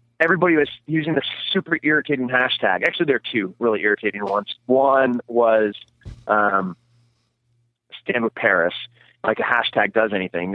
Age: 30-49